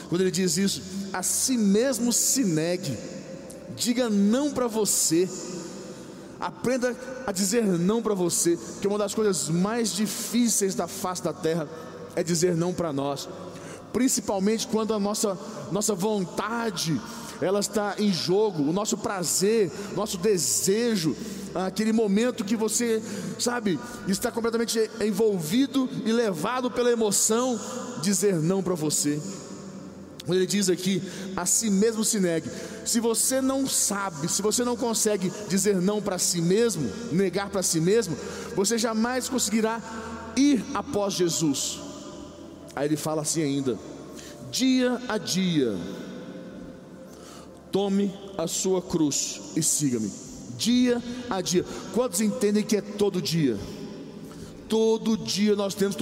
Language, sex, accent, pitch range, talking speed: Portuguese, male, Brazilian, 180-225 Hz, 135 wpm